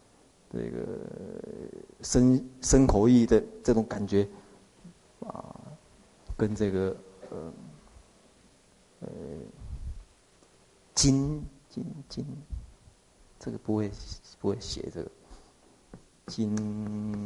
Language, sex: Chinese, male